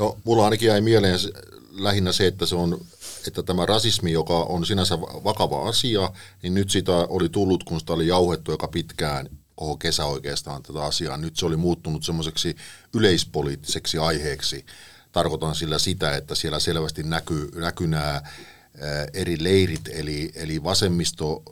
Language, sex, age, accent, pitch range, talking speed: Finnish, male, 50-69, native, 80-95 Hz, 155 wpm